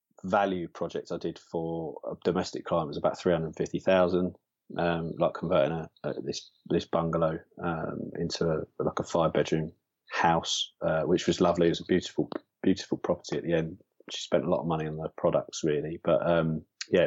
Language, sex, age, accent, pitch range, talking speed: English, male, 30-49, British, 85-95 Hz, 200 wpm